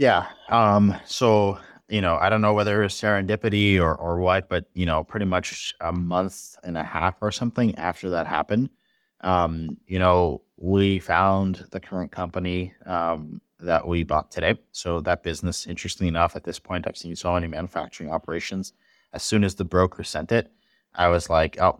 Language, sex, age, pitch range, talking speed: English, male, 30-49, 85-95 Hz, 185 wpm